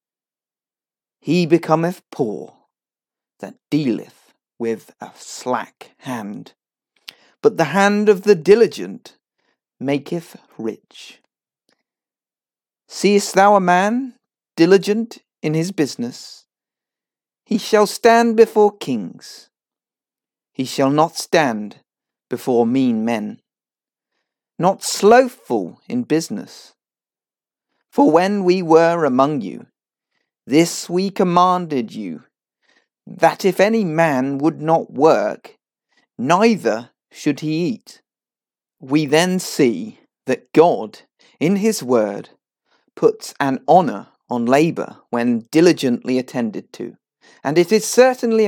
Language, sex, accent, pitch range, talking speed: English, male, British, 135-215 Hz, 105 wpm